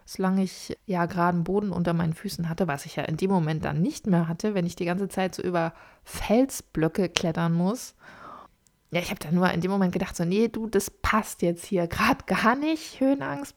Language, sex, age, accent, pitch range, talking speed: German, female, 20-39, German, 175-215 Hz, 220 wpm